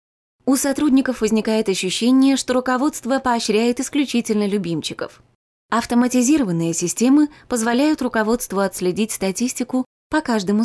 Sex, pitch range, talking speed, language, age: female, 195-250 Hz, 95 wpm, Russian, 20-39